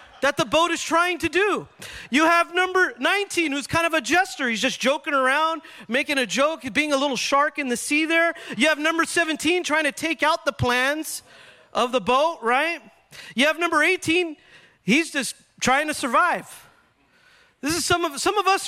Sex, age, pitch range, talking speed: male, 40-59, 245-320 Hz, 195 wpm